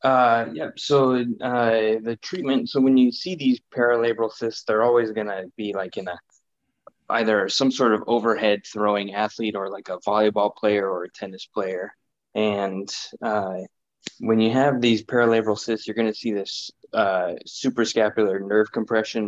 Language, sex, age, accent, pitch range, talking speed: English, male, 20-39, American, 105-115 Hz, 170 wpm